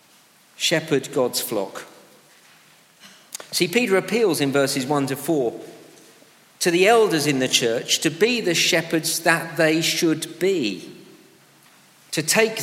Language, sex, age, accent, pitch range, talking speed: English, male, 50-69, British, 135-175 Hz, 130 wpm